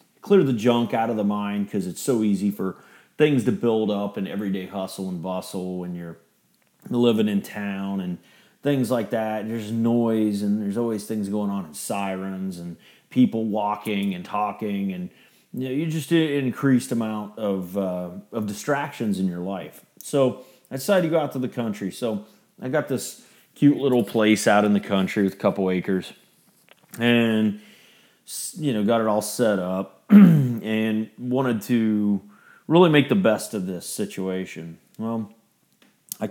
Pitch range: 95-120 Hz